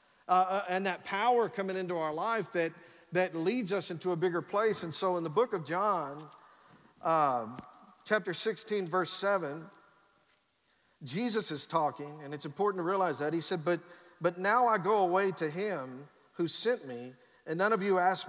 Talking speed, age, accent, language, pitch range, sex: 180 wpm, 50-69, American, English, 170-220 Hz, male